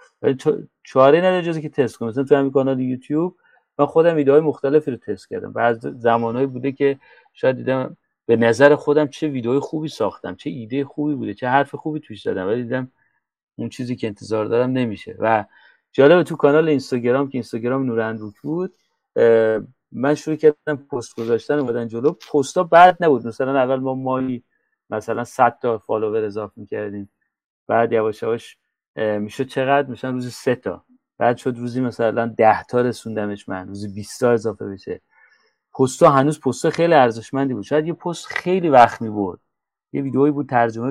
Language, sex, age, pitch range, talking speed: Persian, male, 40-59, 120-150 Hz, 165 wpm